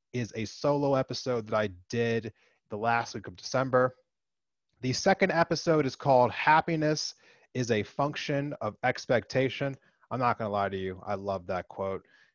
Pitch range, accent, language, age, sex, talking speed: 100-135 Hz, American, English, 30-49, male, 165 wpm